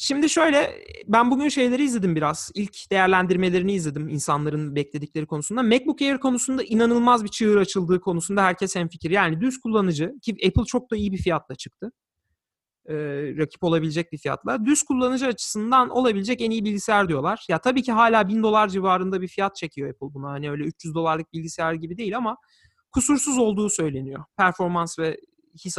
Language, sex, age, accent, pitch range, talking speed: Turkish, male, 40-59, native, 165-270 Hz, 170 wpm